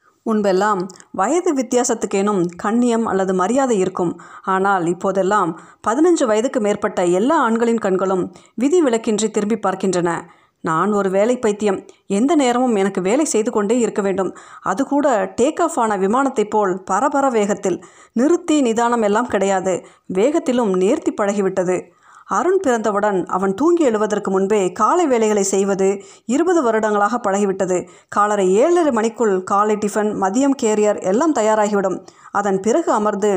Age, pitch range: 30-49, 195-245 Hz